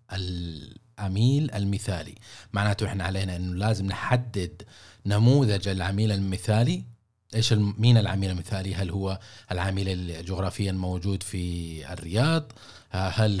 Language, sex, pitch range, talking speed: Arabic, male, 95-120 Hz, 105 wpm